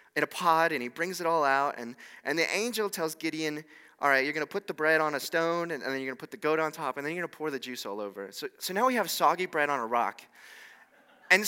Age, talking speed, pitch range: 20-39, 285 wpm, 145-205 Hz